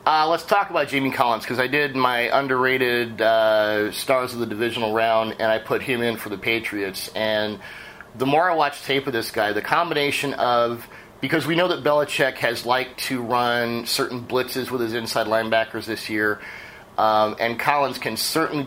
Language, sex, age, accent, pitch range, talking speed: English, male, 30-49, American, 110-135 Hz, 190 wpm